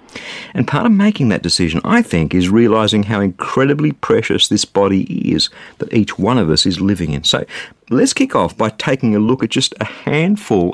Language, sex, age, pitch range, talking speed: English, male, 50-69, 95-145 Hz, 200 wpm